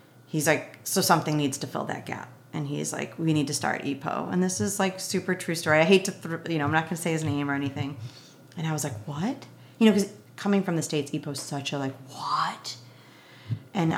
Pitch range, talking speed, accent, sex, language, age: 140-190 Hz, 250 wpm, American, female, English, 30-49